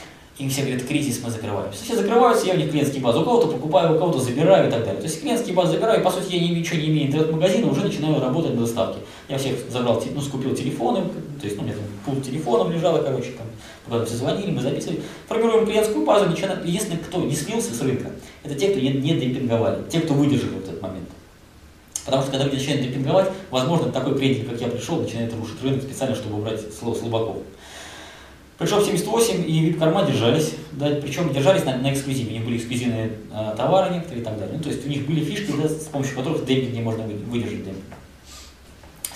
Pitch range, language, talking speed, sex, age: 115-160 Hz, Russian, 215 wpm, male, 20-39